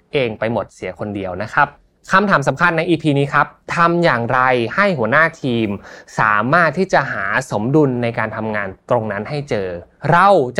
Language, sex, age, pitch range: Thai, male, 20-39, 110-165 Hz